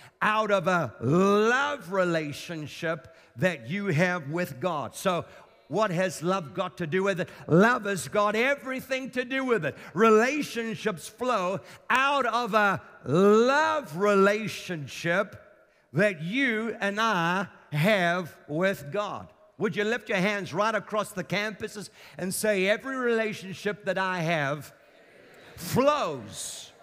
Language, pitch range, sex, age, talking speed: English, 180-235 Hz, male, 50-69, 130 wpm